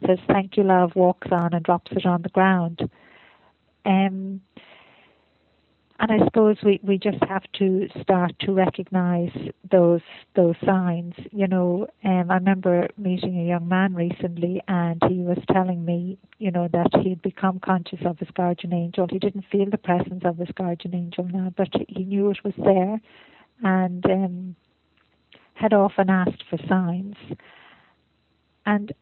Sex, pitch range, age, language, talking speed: female, 180-200 Hz, 50-69, English, 155 wpm